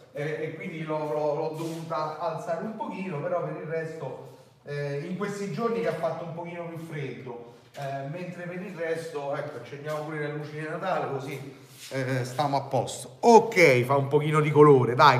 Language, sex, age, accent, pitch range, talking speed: Italian, male, 40-59, native, 145-195 Hz, 190 wpm